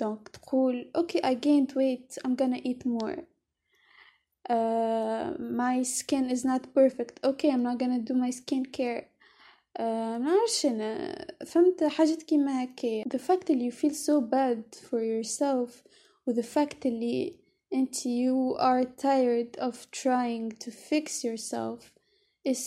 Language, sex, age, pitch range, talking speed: English, female, 20-39, 250-305 Hz, 115 wpm